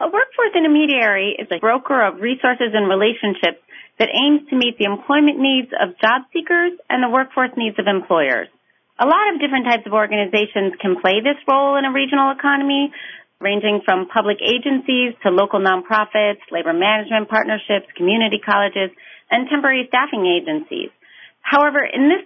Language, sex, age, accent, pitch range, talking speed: English, female, 40-59, American, 195-265 Hz, 160 wpm